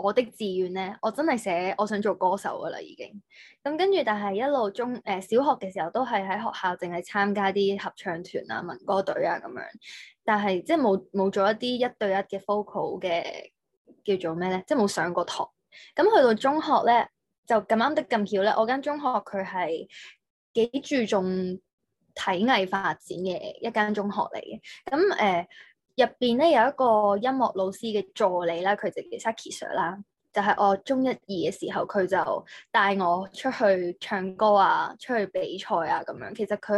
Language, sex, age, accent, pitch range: Chinese, female, 20-39, native, 195-260 Hz